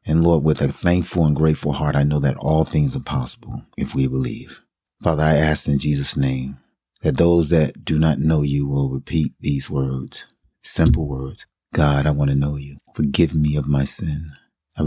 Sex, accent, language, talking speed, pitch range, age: male, American, English, 200 wpm, 70-80 Hz, 40-59